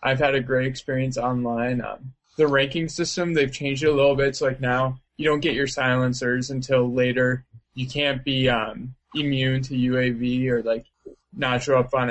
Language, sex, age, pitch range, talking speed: English, male, 20-39, 125-135 Hz, 195 wpm